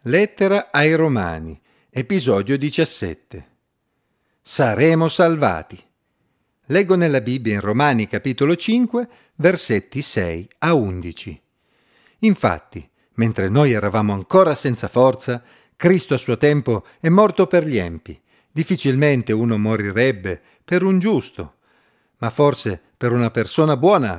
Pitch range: 110-155 Hz